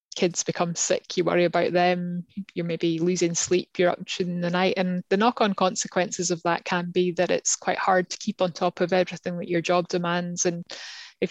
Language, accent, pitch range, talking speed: English, British, 170-185 Hz, 210 wpm